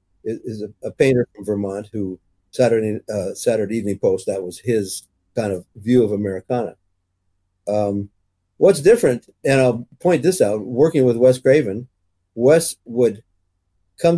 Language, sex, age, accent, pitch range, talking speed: English, male, 50-69, American, 90-130 Hz, 150 wpm